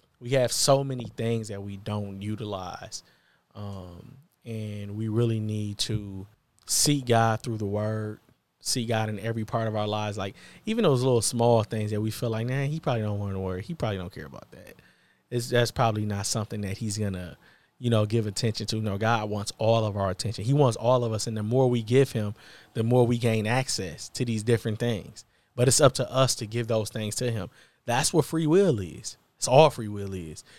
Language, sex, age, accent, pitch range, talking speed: English, male, 20-39, American, 110-130 Hz, 225 wpm